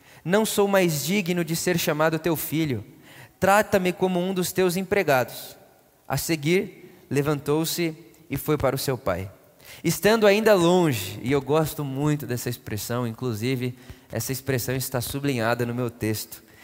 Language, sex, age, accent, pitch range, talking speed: Portuguese, male, 20-39, Brazilian, 140-185 Hz, 150 wpm